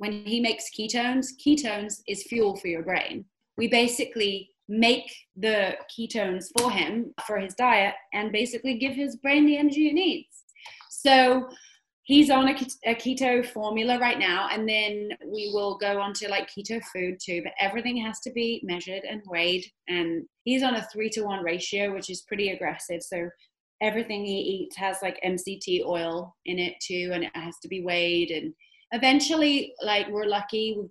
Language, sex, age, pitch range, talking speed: English, female, 30-49, 185-230 Hz, 175 wpm